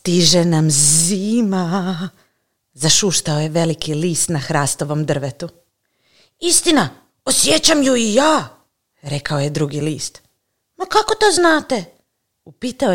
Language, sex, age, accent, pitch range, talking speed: Croatian, female, 40-59, native, 140-180 Hz, 110 wpm